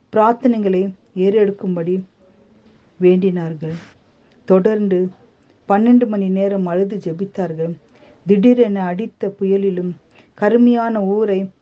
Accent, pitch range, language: native, 180-220 Hz, Tamil